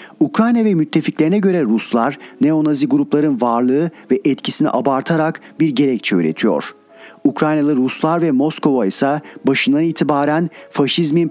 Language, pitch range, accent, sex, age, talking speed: Turkish, 145-190 Hz, native, male, 40-59, 115 wpm